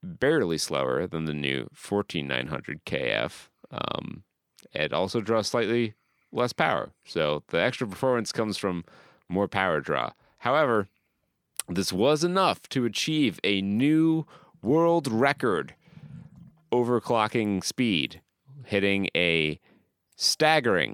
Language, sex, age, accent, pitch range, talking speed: English, male, 30-49, American, 90-130 Hz, 105 wpm